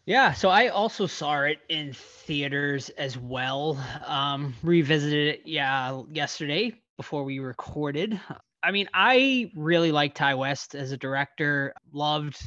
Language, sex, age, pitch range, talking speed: English, male, 20-39, 140-165 Hz, 140 wpm